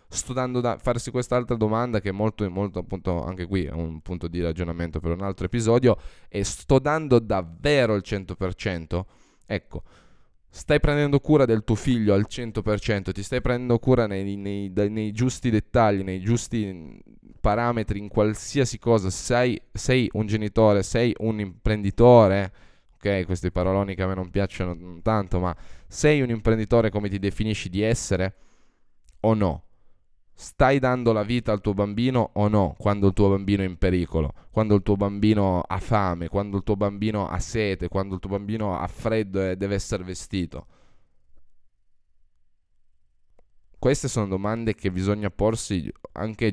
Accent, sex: native, male